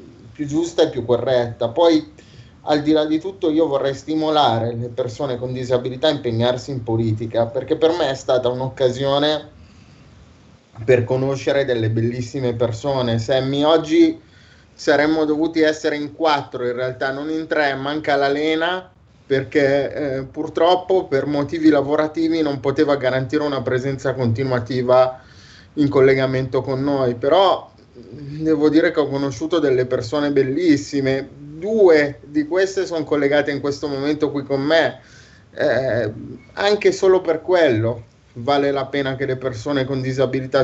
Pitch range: 125-150 Hz